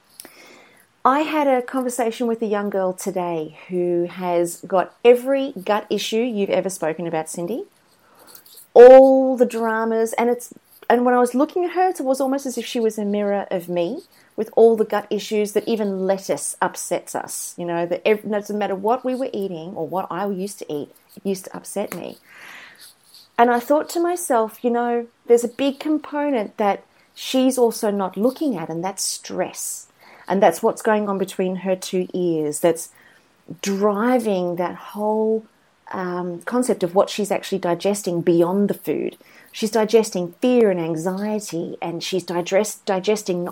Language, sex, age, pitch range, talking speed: English, female, 30-49, 185-250 Hz, 175 wpm